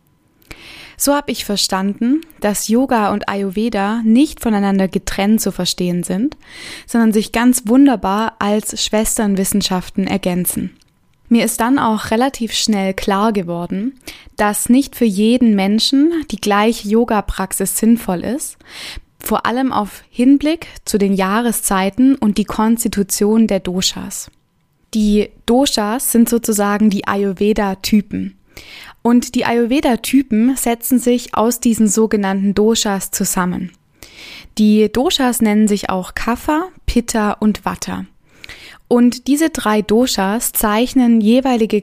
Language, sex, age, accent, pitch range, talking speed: German, female, 20-39, German, 200-240 Hz, 120 wpm